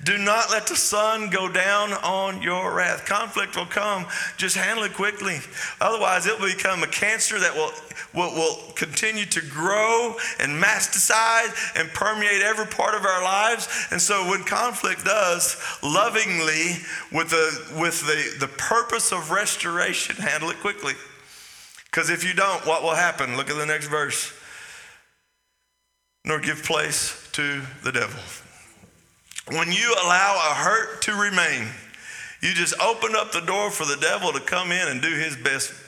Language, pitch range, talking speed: English, 160-230 Hz, 160 wpm